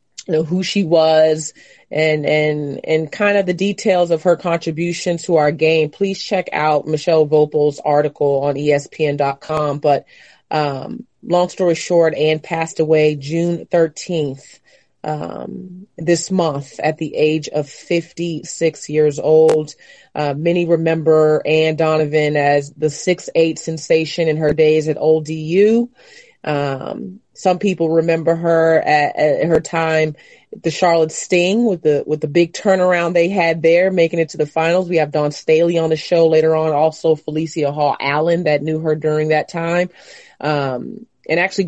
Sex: female